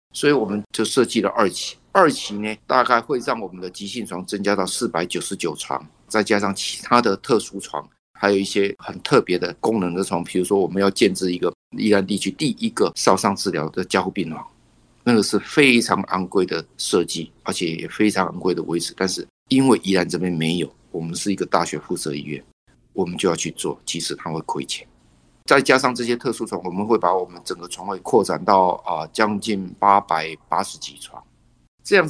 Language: Chinese